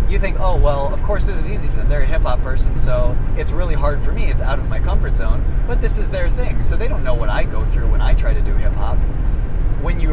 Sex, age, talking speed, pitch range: male, 20-39, 285 wpm, 105-125 Hz